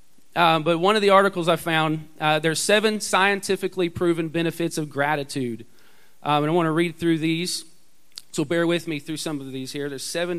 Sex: male